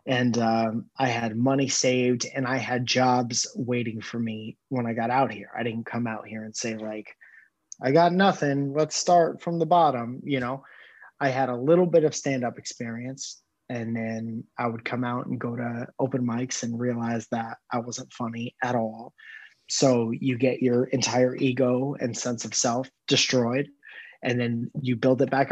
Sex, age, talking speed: male, 30-49, 190 wpm